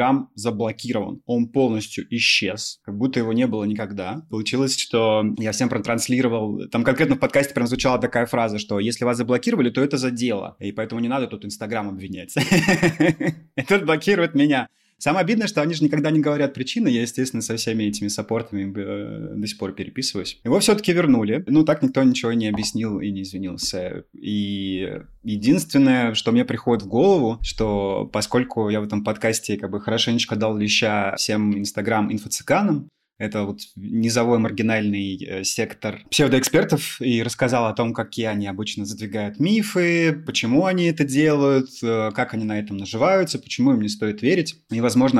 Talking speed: 165 wpm